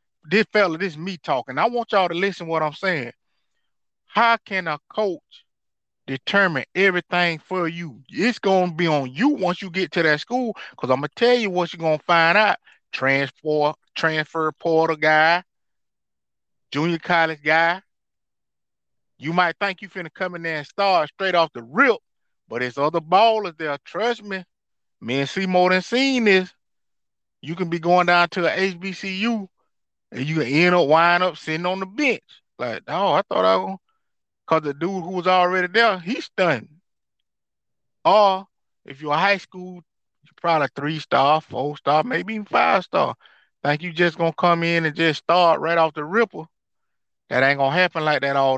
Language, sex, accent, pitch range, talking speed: English, male, American, 150-195 Hz, 185 wpm